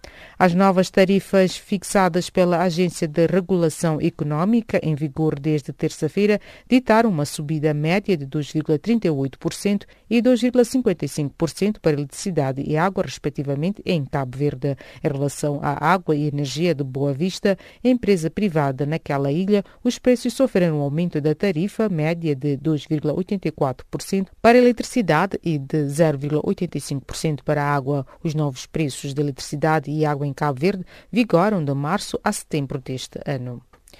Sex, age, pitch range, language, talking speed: female, 40-59, 145-195 Hz, English, 135 wpm